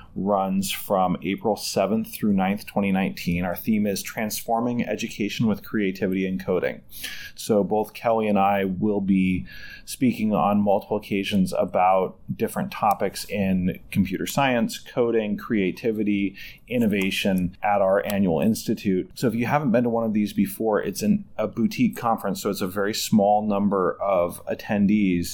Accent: American